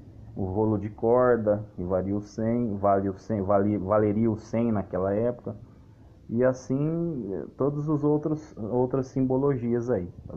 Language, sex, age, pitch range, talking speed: Portuguese, male, 30-49, 100-135 Hz, 145 wpm